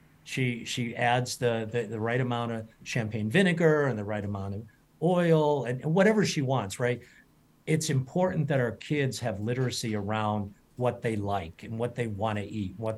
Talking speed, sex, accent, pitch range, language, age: 190 wpm, male, American, 110-140 Hz, English, 50-69